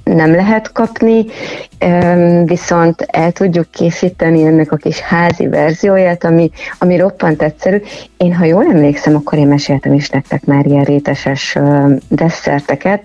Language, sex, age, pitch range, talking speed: Hungarian, female, 30-49, 145-180 Hz, 135 wpm